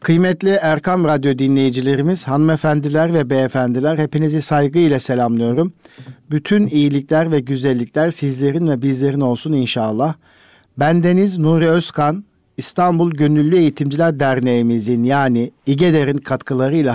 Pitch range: 125-160 Hz